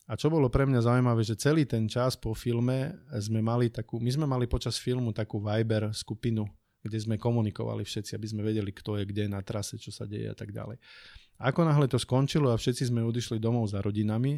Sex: male